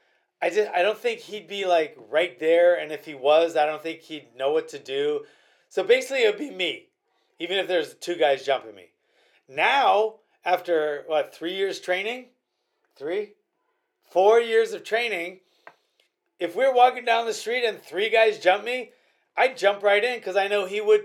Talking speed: 185 wpm